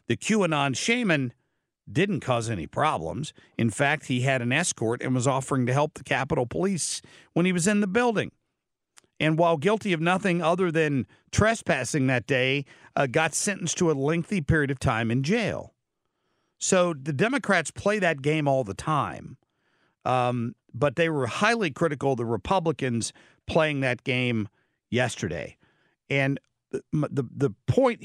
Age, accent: 60-79, American